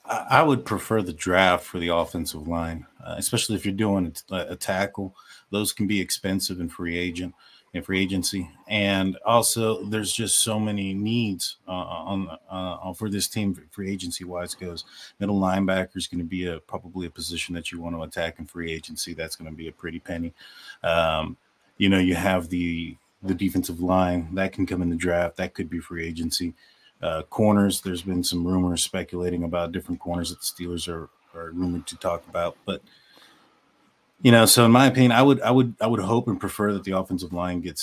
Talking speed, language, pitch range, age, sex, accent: 205 wpm, English, 85-100 Hz, 30-49, male, American